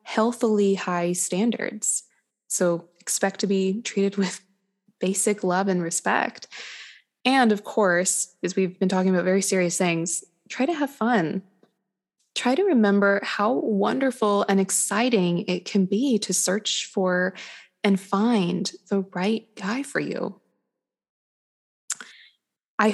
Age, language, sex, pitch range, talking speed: 20-39, English, female, 180-215 Hz, 130 wpm